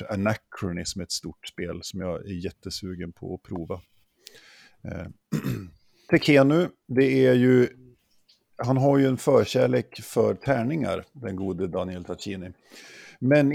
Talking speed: 125 wpm